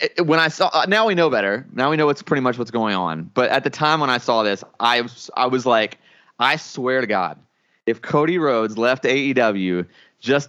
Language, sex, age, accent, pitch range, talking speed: English, male, 20-39, American, 115-165 Hz, 230 wpm